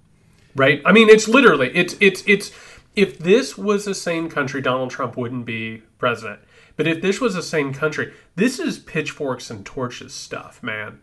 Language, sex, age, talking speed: English, male, 30-49, 180 wpm